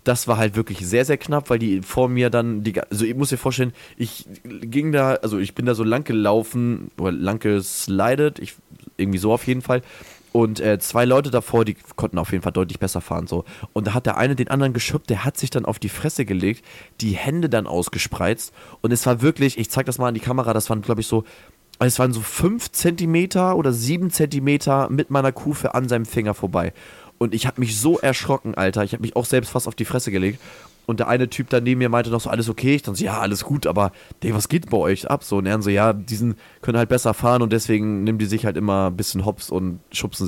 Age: 20-39